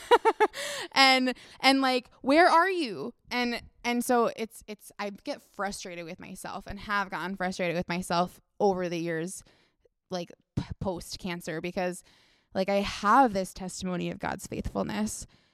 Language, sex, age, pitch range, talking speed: English, female, 20-39, 180-220 Hz, 145 wpm